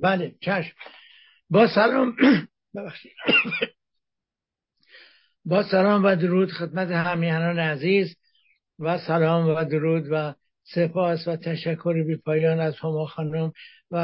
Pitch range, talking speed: 160-180 Hz, 105 wpm